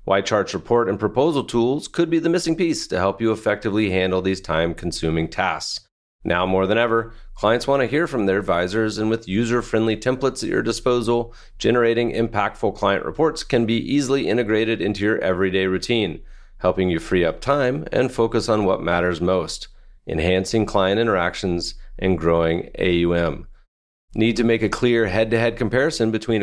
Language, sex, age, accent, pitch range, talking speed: English, male, 30-49, American, 95-120 Hz, 165 wpm